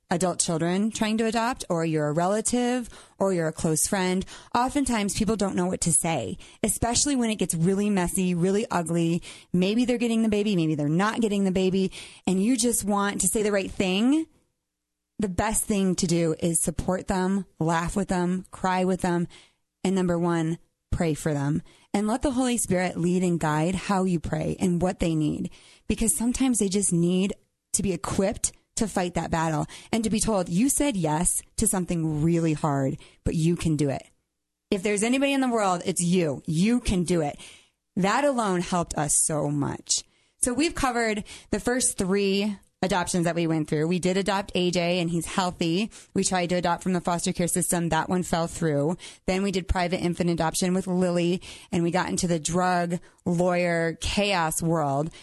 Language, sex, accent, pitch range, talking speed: English, female, American, 170-205 Hz, 195 wpm